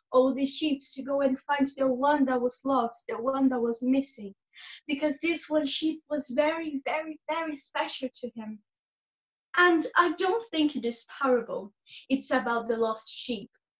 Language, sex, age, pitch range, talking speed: English, female, 10-29, 245-300 Hz, 175 wpm